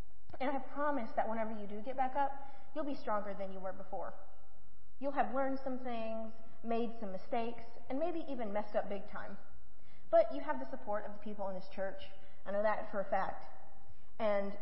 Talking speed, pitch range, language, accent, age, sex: 210 wpm, 195-265 Hz, English, American, 30-49, female